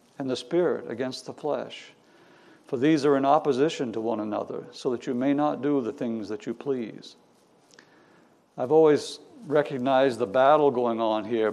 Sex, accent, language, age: male, American, English, 60-79